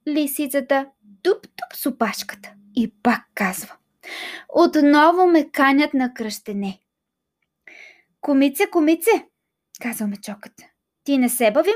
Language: Bulgarian